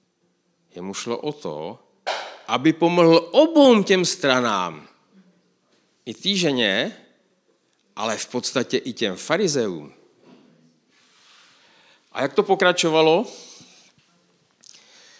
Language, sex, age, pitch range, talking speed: Czech, male, 50-69, 110-170 Hz, 85 wpm